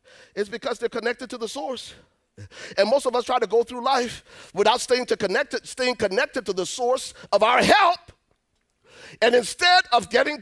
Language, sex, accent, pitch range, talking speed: English, male, American, 185-255 Hz, 175 wpm